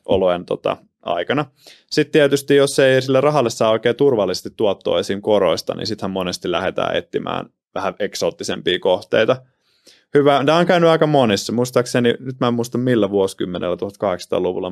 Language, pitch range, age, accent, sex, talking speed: Finnish, 105-140 Hz, 20-39, native, male, 150 wpm